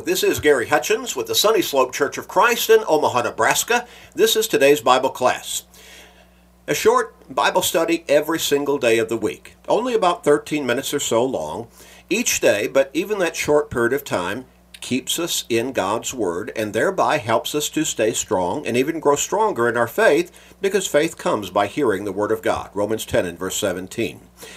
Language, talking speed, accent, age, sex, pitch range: English, 190 wpm, American, 50-69, male, 105-150 Hz